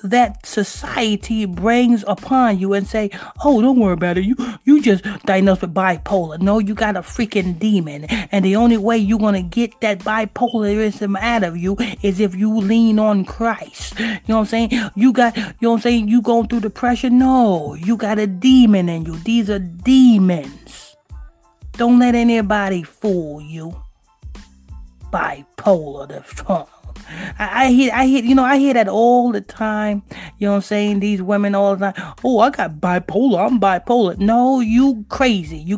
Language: English